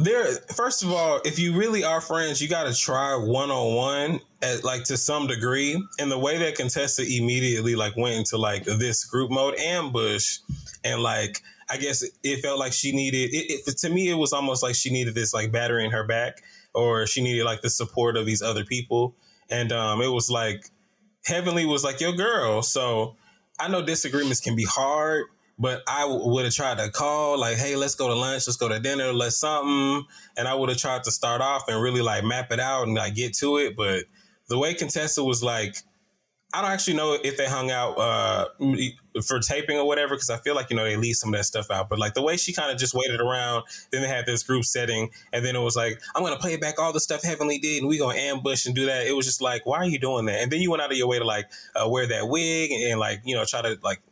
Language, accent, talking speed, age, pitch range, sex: English, American, 250 wpm, 20-39, 120-150 Hz, male